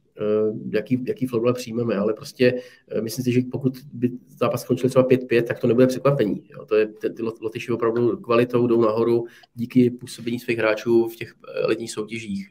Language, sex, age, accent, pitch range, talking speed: Czech, male, 20-39, native, 110-125 Hz, 170 wpm